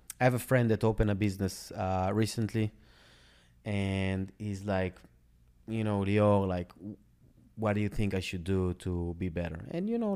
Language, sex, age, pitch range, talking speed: English, male, 30-49, 90-120 Hz, 175 wpm